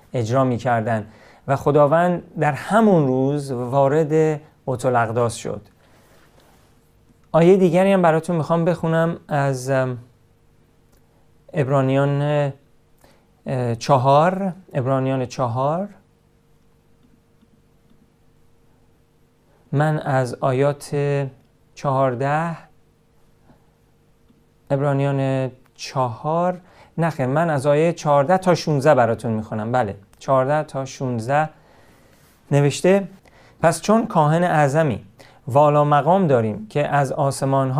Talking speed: 85 wpm